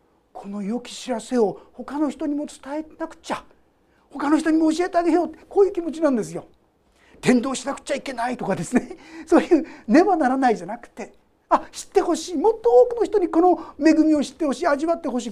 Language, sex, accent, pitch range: Japanese, male, native, 200-305 Hz